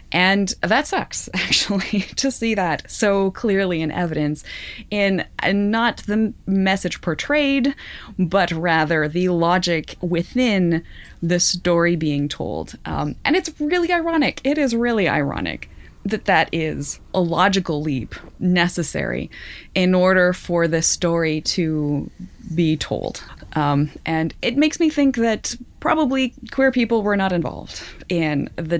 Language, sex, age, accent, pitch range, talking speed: English, female, 20-39, American, 165-230 Hz, 135 wpm